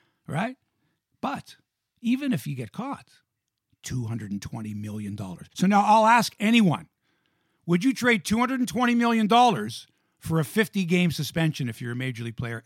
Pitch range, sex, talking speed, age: 160-225 Hz, male, 180 wpm, 50-69